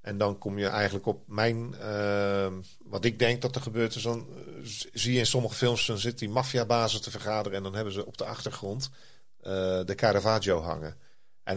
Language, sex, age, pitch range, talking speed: Dutch, male, 40-59, 100-120 Hz, 205 wpm